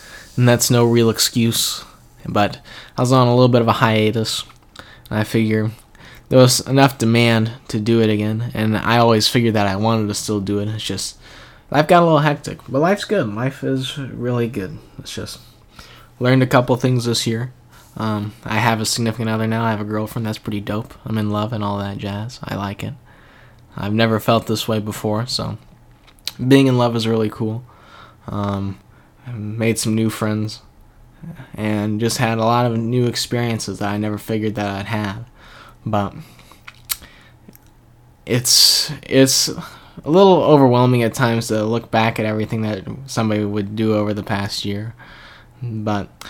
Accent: American